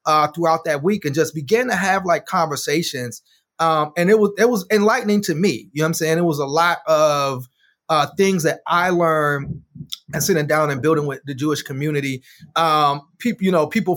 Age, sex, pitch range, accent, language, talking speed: 30-49, male, 145-180 Hz, American, English, 210 wpm